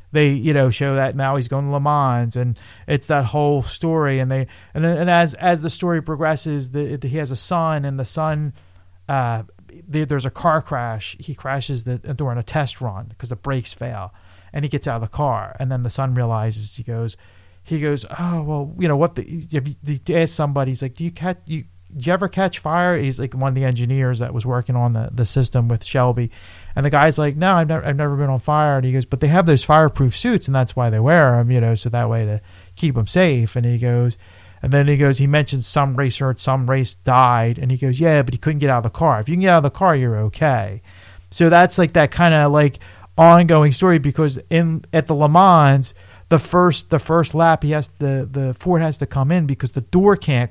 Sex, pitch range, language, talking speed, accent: male, 120-155 Hz, English, 245 wpm, American